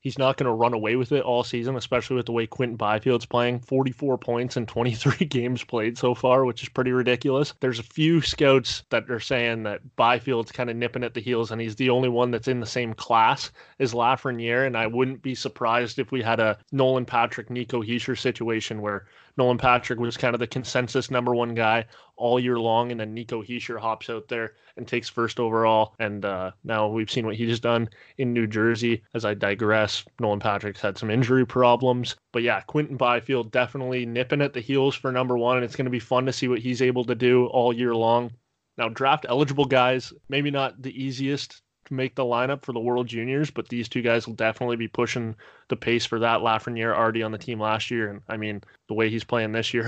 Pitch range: 115-135 Hz